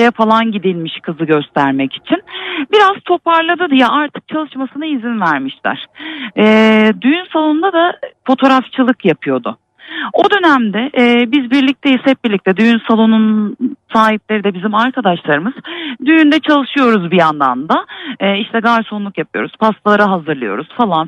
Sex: female